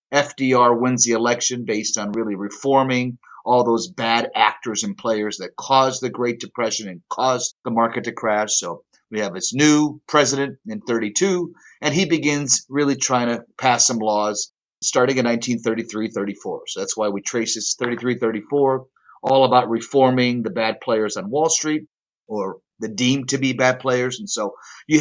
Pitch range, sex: 110-135 Hz, male